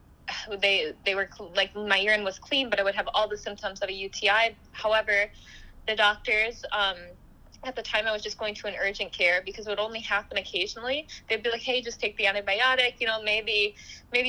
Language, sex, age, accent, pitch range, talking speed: English, female, 20-39, American, 195-235 Hz, 215 wpm